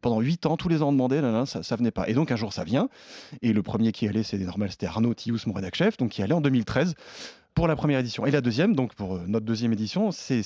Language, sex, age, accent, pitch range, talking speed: French, male, 30-49, French, 110-140 Hz, 285 wpm